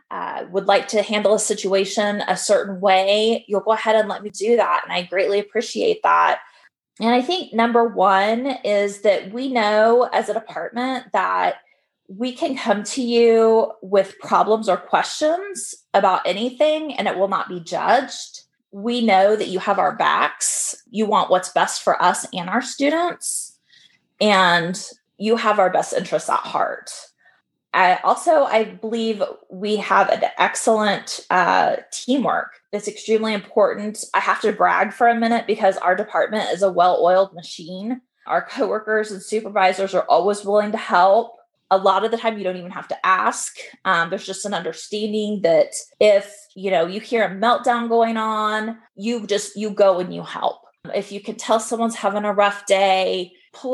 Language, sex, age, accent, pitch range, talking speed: English, female, 20-39, American, 195-230 Hz, 175 wpm